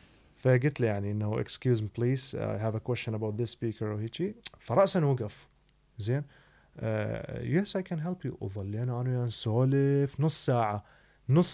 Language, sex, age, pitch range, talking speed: Arabic, male, 30-49, 120-150 Hz, 155 wpm